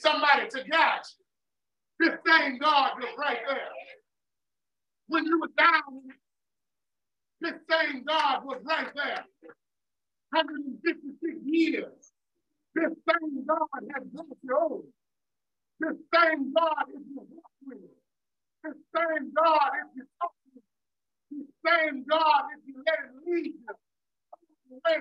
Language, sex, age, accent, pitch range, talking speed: English, male, 50-69, American, 280-330 Hz, 135 wpm